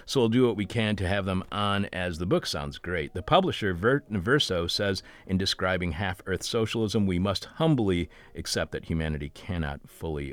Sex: male